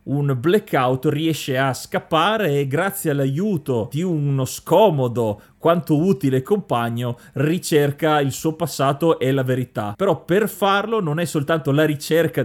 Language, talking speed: Italian, 140 wpm